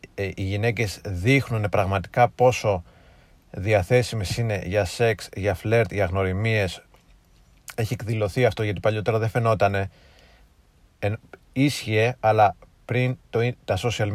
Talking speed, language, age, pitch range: 120 wpm, Greek, 30-49, 105-120 Hz